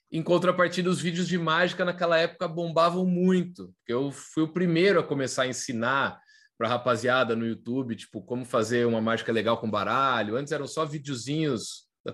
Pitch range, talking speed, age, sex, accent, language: 125-175 Hz, 180 wpm, 20-39, male, Brazilian, Portuguese